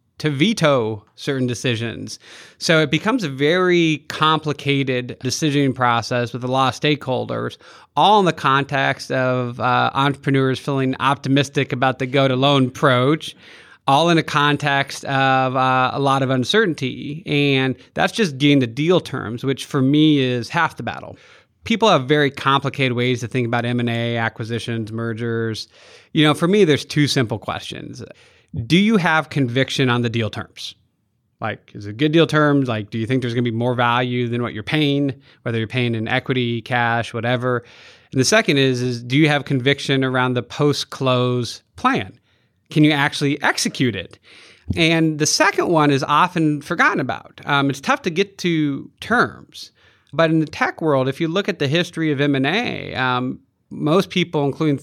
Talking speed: 175 wpm